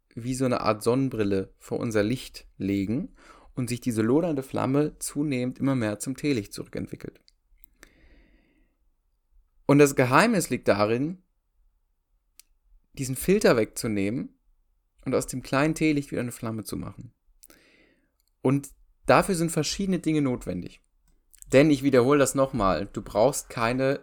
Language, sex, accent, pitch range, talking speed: German, male, German, 110-145 Hz, 130 wpm